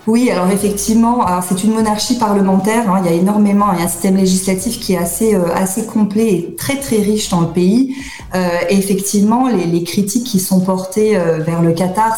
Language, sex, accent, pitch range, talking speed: French, female, French, 180-220 Hz, 220 wpm